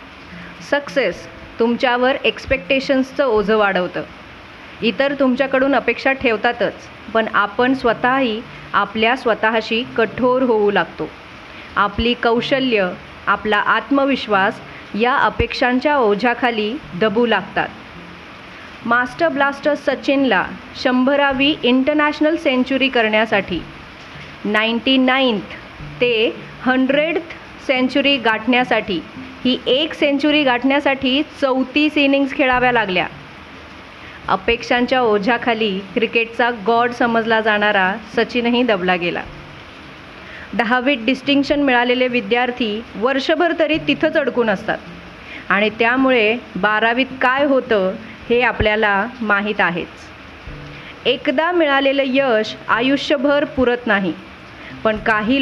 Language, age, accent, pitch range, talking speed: Marathi, 30-49, native, 220-270 Hz, 90 wpm